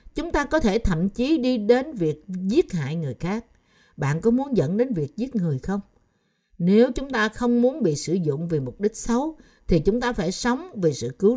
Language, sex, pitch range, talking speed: Vietnamese, female, 170-245 Hz, 220 wpm